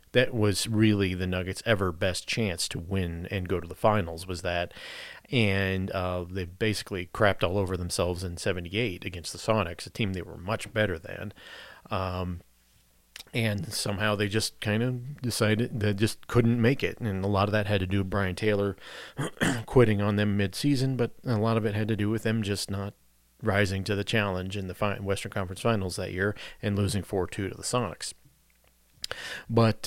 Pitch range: 90-110 Hz